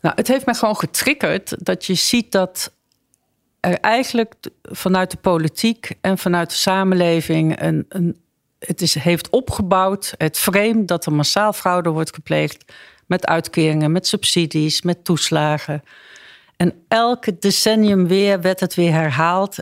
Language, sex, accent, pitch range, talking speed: Dutch, female, Dutch, 155-200 Hz, 130 wpm